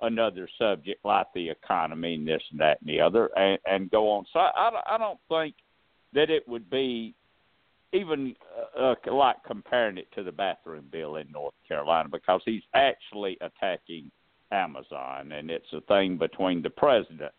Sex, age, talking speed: male, 60-79, 170 wpm